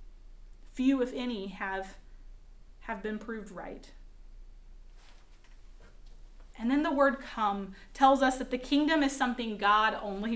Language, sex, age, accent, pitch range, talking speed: English, female, 30-49, American, 235-285 Hz, 125 wpm